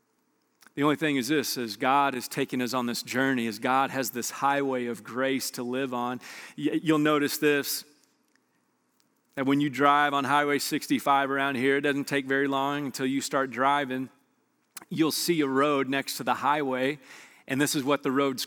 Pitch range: 125-150 Hz